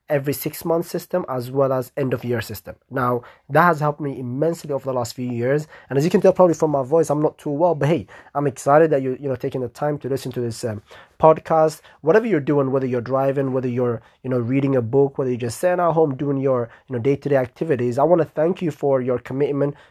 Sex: male